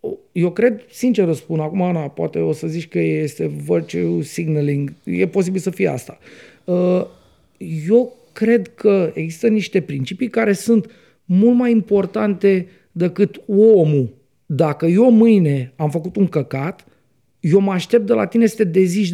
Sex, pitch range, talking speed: male, 155-225 Hz, 155 wpm